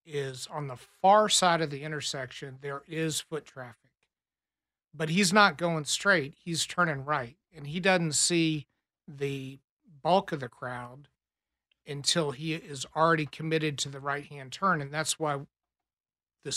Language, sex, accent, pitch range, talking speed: English, male, American, 135-165 Hz, 150 wpm